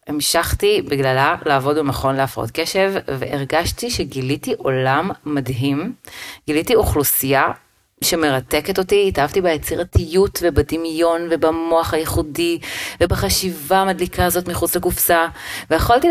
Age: 30-49